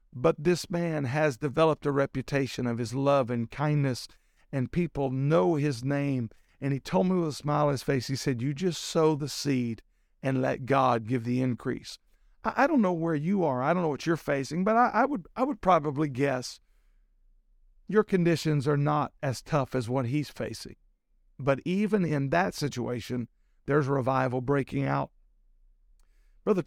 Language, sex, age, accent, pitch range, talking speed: English, male, 50-69, American, 130-165 Hz, 175 wpm